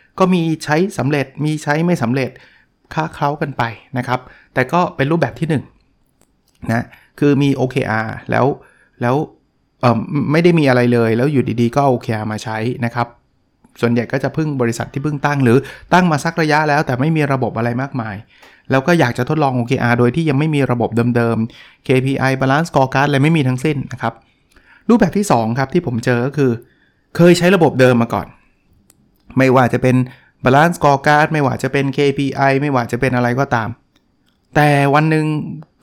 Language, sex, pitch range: Thai, male, 120-155 Hz